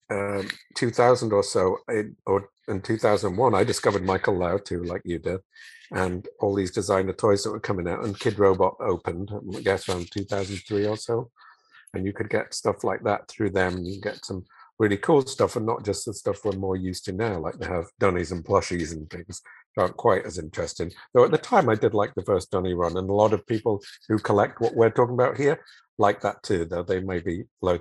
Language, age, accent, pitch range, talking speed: English, 50-69, British, 95-110 Hz, 225 wpm